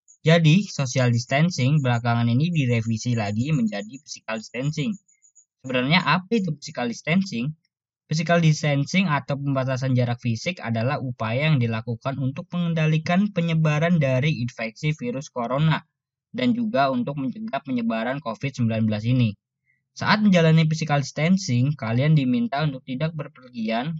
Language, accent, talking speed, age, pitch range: Indonesian, native, 120 wpm, 10-29, 125-165 Hz